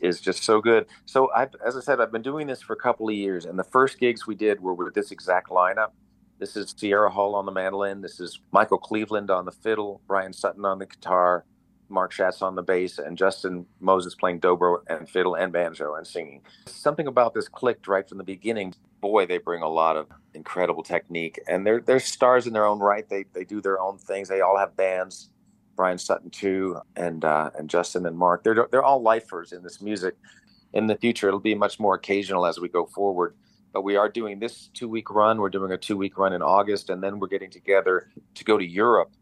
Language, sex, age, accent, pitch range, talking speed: English, male, 40-59, American, 90-105 Hz, 225 wpm